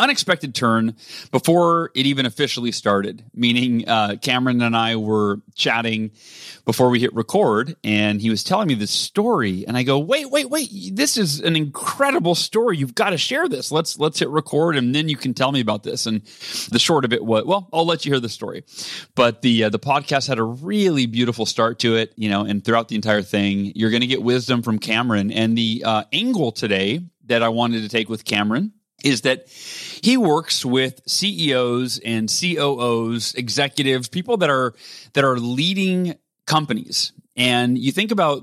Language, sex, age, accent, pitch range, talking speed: English, male, 30-49, American, 115-165 Hz, 195 wpm